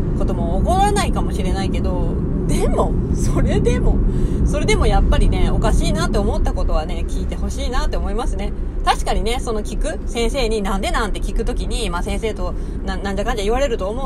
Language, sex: Japanese, female